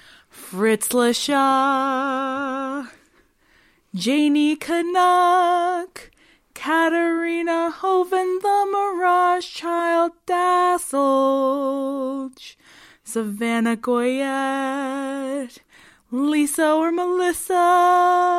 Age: 20-39